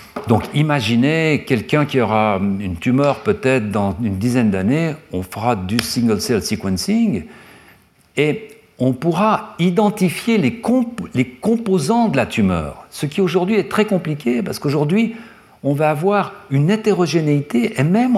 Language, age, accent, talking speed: French, 60-79, French, 140 wpm